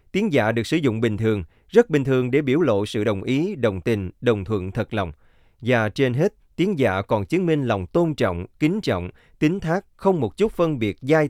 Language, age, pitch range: Vietnamese, 20-39, 100-150 Hz